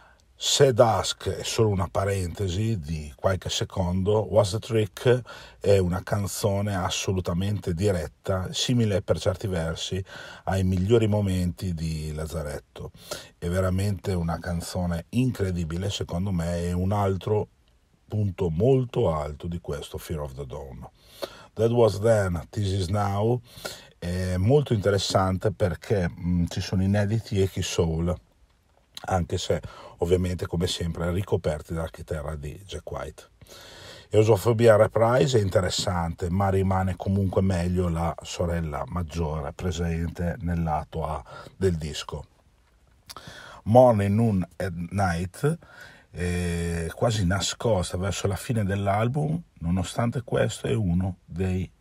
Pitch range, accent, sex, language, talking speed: 85-105 Hz, native, male, Italian, 120 wpm